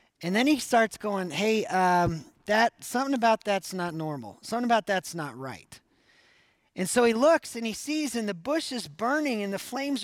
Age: 40-59